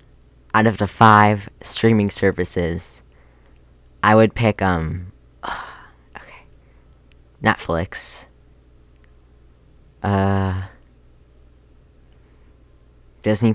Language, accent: English, American